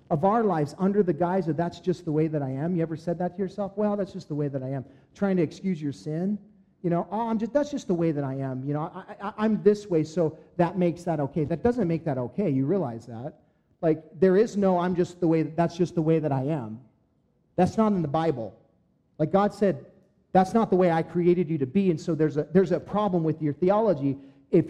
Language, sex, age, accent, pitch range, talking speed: English, male, 40-59, American, 150-200 Hz, 265 wpm